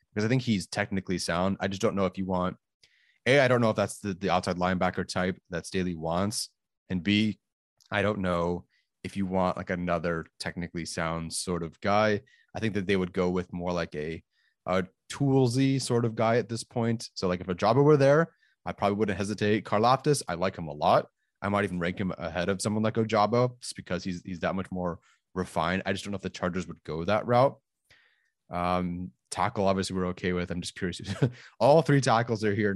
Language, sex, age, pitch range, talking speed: English, male, 30-49, 90-110 Hz, 220 wpm